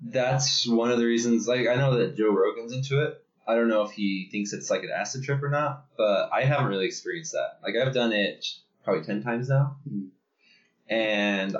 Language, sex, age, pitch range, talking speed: English, male, 20-39, 95-140 Hz, 210 wpm